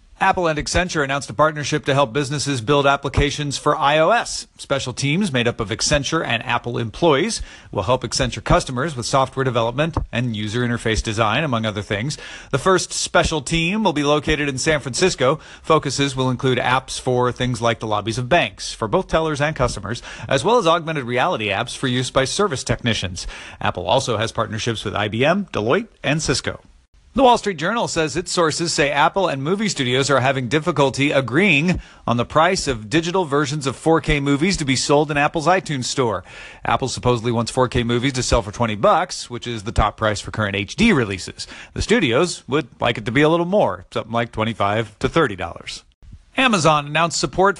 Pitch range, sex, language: 120-160 Hz, male, English